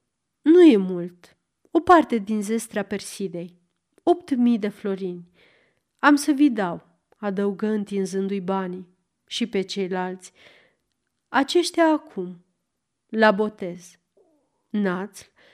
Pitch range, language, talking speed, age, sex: 195-280 Hz, Romanian, 105 wpm, 30-49, female